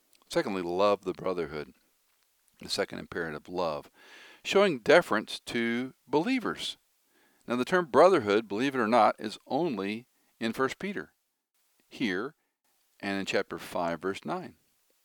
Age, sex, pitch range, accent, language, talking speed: 50-69, male, 95-155 Hz, American, English, 130 wpm